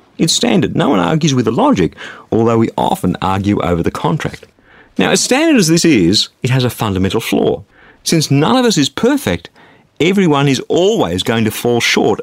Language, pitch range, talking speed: English, 105-140 Hz, 190 wpm